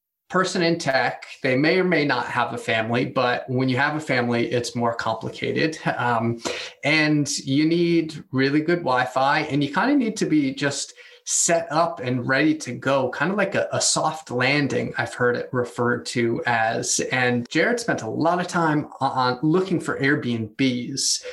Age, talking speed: 30-49, 185 wpm